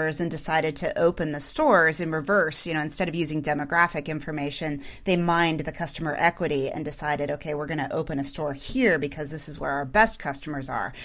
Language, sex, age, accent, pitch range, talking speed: English, female, 30-49, American, 150-185 Hz, 205 wpm